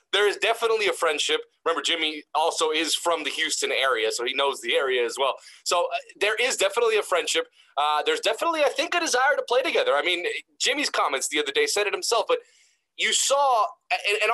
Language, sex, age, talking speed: English, male, 30-49, 215 wpm